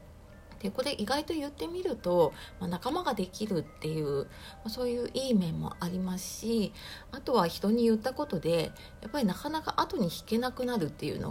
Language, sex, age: Japanese, female, 40-59